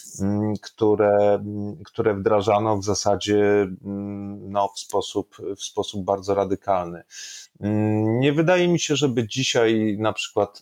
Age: 30-49